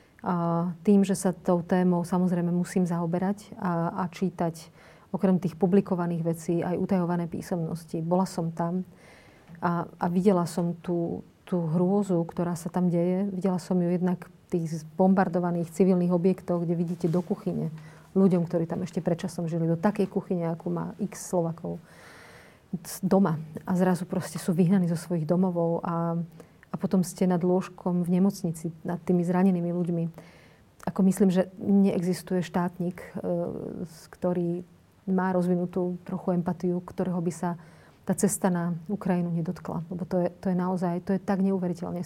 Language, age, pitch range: Slovak, 40-59, 170-190 Hz